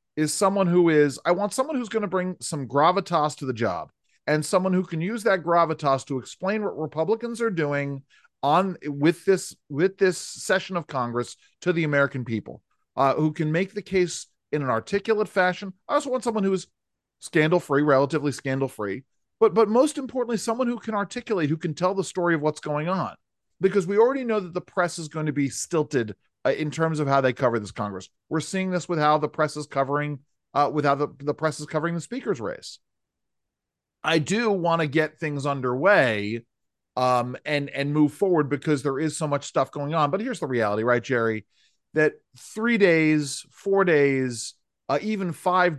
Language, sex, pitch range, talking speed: English, male, 135-185 Hz, 200 wpm